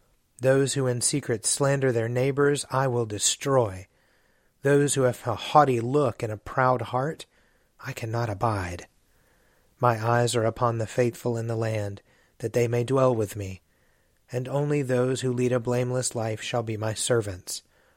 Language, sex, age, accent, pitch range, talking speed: English, male, 30-49, American, 115-135 Hz, 165 wpm